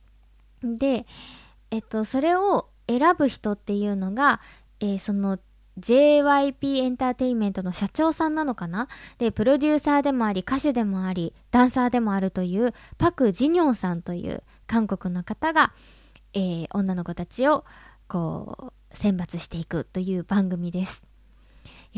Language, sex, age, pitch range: Japanese, female, 20-39, 195-270 Hz